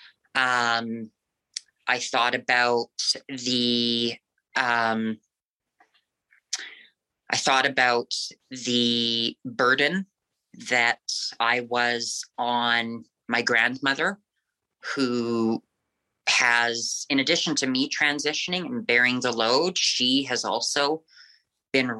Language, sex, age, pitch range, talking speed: English, female, 30-49, 120-145 Hz, 85 wpm